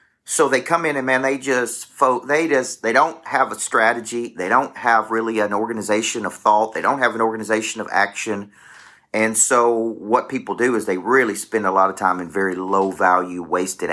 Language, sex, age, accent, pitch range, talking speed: English, male, 40-59, American, 95-120 Hz, 205 wpm